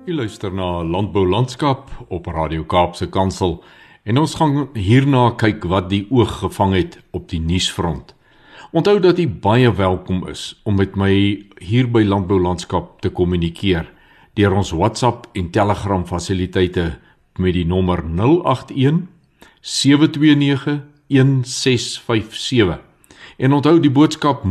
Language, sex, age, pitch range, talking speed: Swedish, male, 50-69, 90-115 Hz, 120 wpm